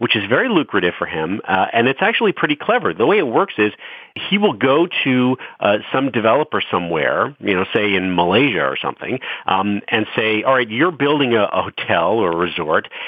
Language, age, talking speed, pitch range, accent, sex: English, 40-59, 205 wpm, 105-140 Hz, American, male